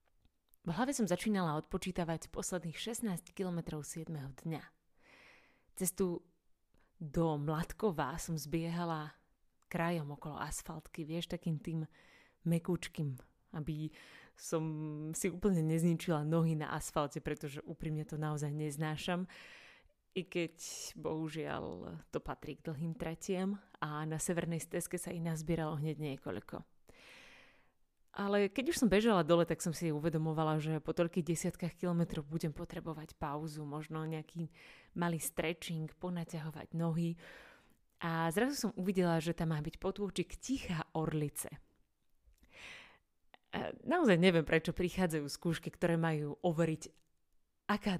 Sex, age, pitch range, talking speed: female, 30-49, 155-175 Hz, 120 wpm